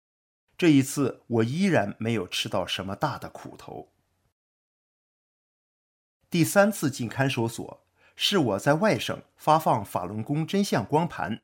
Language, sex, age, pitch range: Chinese, male, 50-69, 105-155 Hz